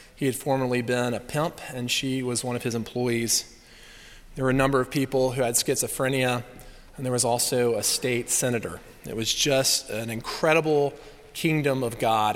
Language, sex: English, male